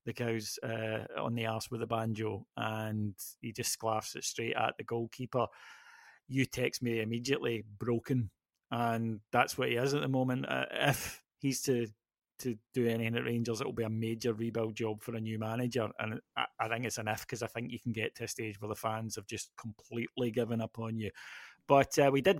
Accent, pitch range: British, 115-130 Hz